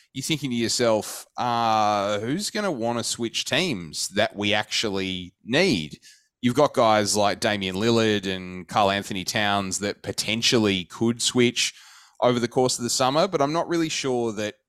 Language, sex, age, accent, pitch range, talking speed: English, male, 20-39, Australian, 95-110 Hz, 170 wpm